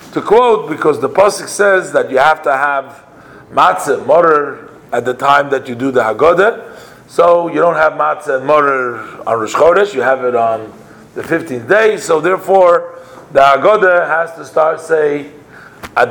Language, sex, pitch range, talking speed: English, male, 125-175 Hz, 170 wpm